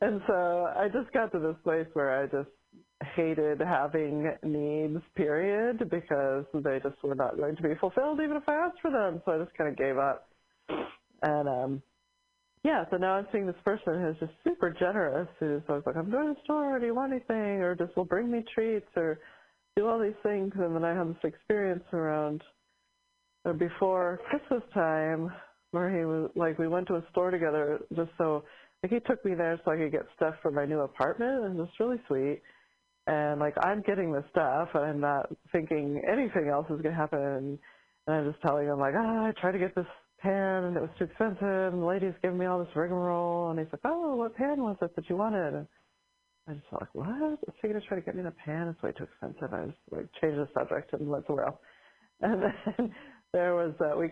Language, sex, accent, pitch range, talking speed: English, female, American, 155-215 Hz, 225 wpm